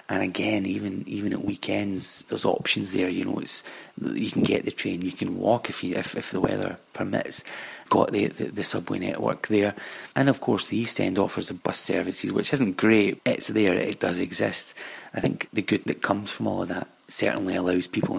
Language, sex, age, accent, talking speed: English, male, 30-49, British, 215 wpm